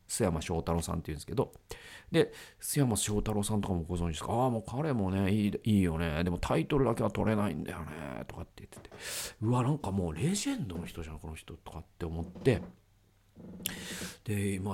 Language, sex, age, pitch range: Japanese, male, 40-59, 85-125 Hz